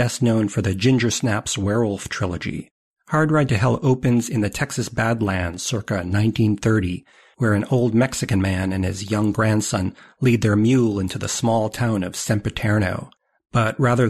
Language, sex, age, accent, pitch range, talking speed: English, male, 40-59, American, 105-125 Hz, 165 wpm